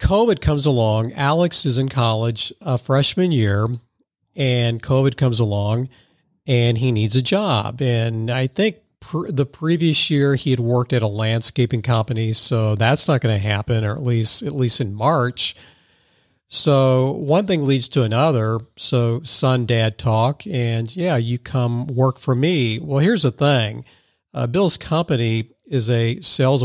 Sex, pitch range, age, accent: male, 115-135 Hz, 50-69, American